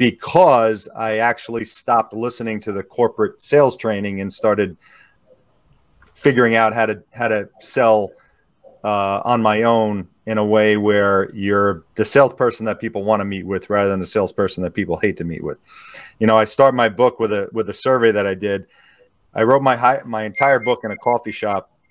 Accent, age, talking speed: American, 40-59, 195 wpm